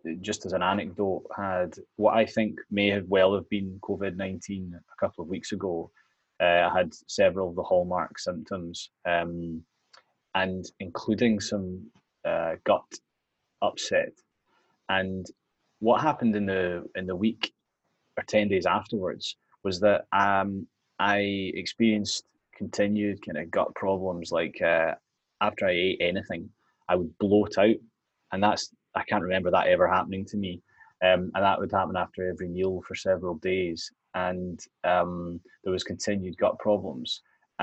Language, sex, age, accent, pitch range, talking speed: English, male, 20-39, British, 90-105 Hz, 150 wpm